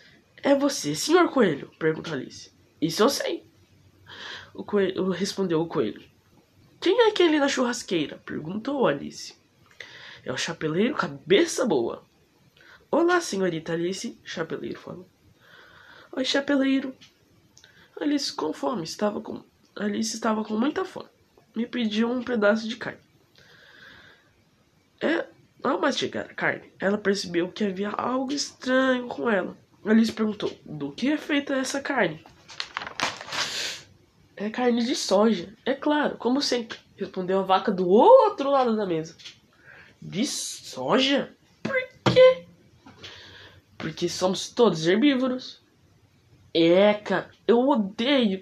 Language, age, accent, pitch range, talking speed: Portuguese, 20-39, Brazilian, 185-280 Hz, 120 wpm